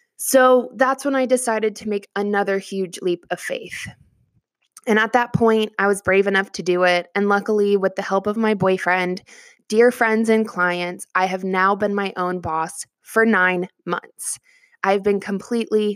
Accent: American